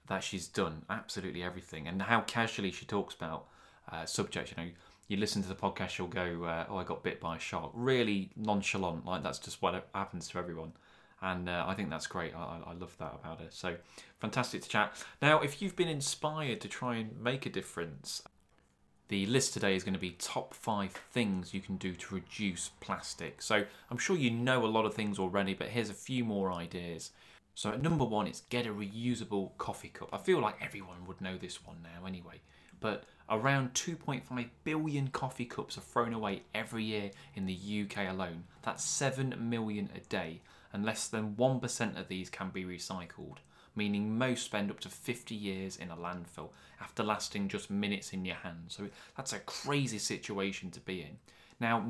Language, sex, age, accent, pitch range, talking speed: English, male, 20-39, British, 90-120 Hz, 200 wpm